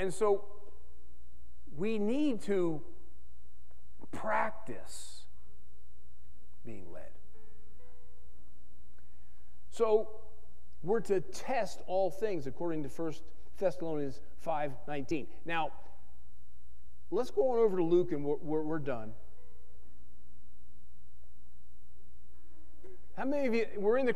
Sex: male